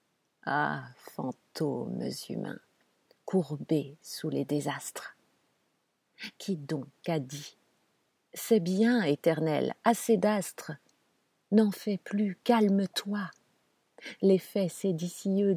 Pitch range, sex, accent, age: 165-200 Hz, female, French, 50-69